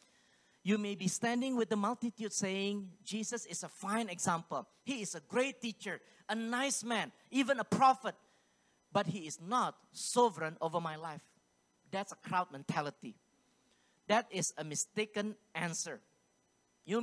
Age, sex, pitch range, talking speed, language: 40-59, male, 185-250 Hz, 150 wpm, English